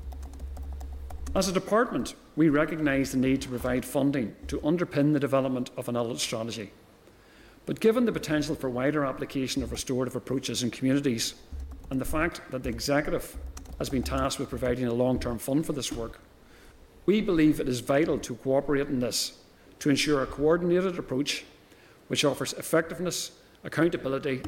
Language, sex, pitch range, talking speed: English, male, 120-150 Hz, 160 wpm